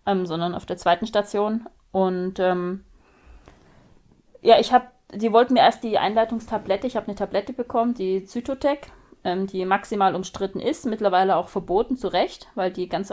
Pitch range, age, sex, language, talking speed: 185-225 Hz, 30-49, female, German, 170 wpm